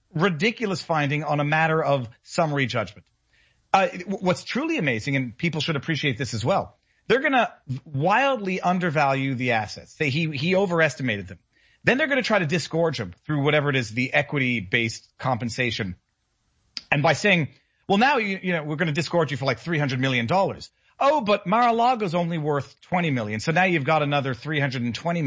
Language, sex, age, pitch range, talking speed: English, male, 40-59, 135-195 Hz, 185 wpm